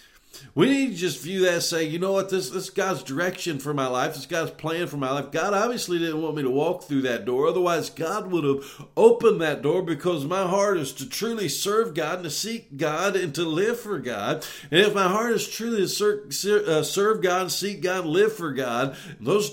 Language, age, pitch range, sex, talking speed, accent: English, 50-69, 140-205 Hz, male, 225 wpm, American